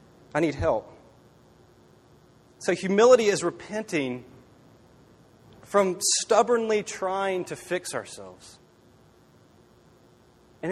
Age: 30-49